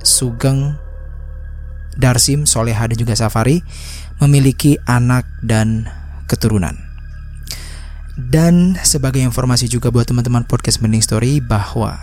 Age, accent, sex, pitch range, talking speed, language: 20-39, native, male, 100-125 Hz, 100 wpm, Indonesian